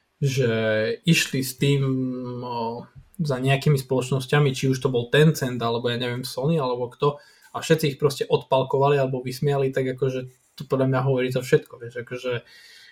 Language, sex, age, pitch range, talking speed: Slovak, male, 20-39, 130-150 Hz, 165 wpm